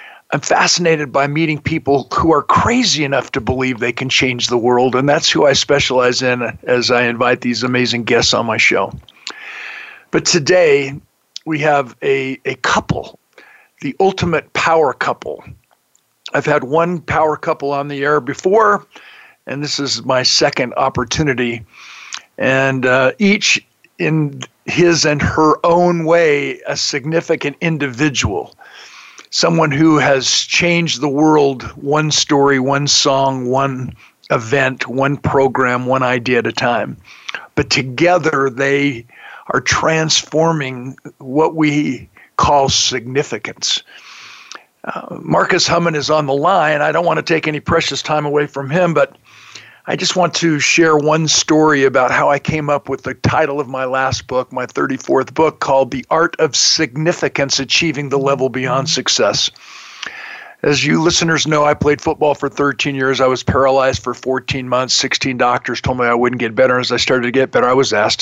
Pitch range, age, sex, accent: 130-160 Hz, 50-69, male, American